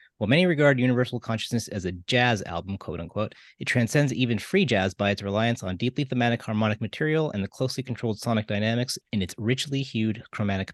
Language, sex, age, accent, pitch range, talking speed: English, male, 30-49, American, 105-125 Hz, 195 wpm